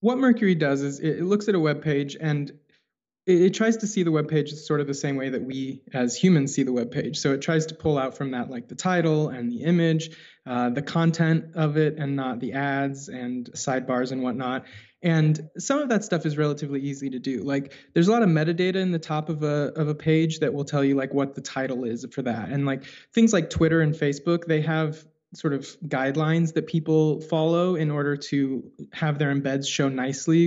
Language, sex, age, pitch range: English, male, 20-39, 135-165 Hz